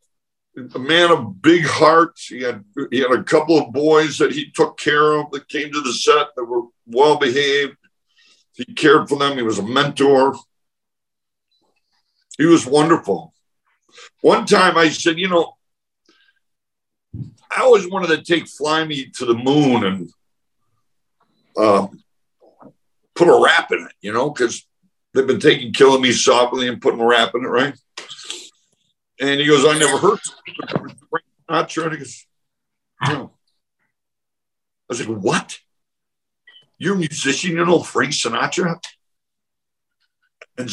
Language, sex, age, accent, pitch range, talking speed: English, male, 60-79, American, 130-170 Hz, 145 wpm